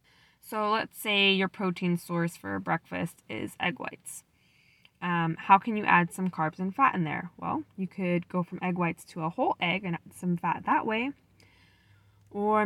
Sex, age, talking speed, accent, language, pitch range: female, 10-29, 190 wpm, American, English, 170-215 Hz